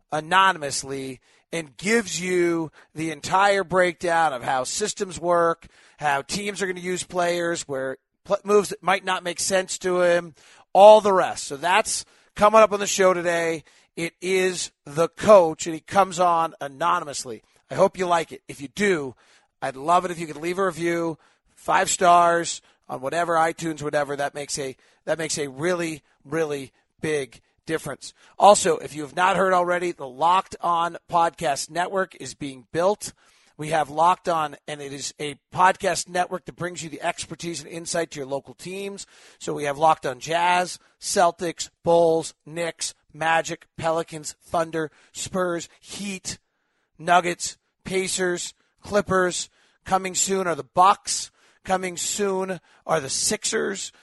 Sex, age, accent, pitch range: male, 30-49, American, 155-185 Hz